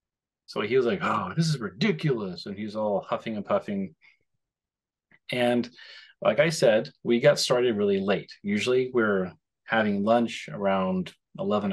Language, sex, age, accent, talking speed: English, male, 30-49, American, 150 wpm